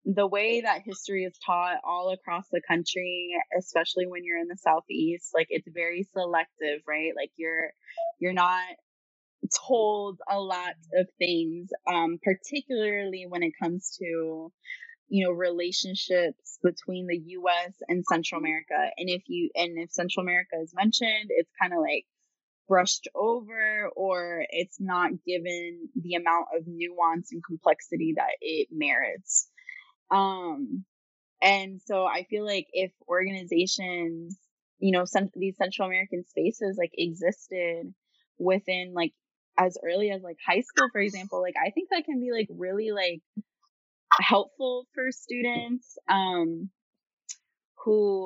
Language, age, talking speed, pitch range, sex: English, 20-39, 140 wpm, 175-210 Hz, female